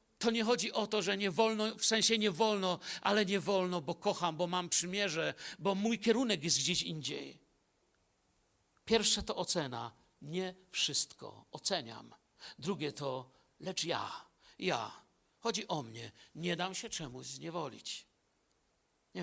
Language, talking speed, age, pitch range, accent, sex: Polish, 145 wpm, 50-69, 155-225 Hz, native, male